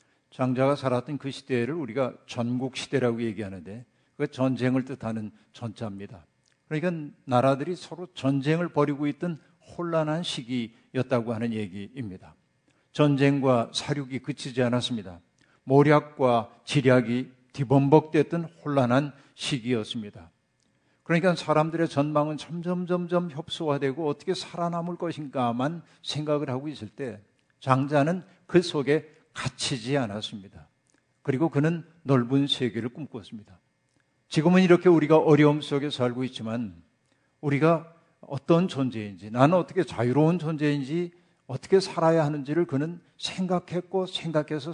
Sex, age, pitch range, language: male, 50-69, 125-160 Hz, Korean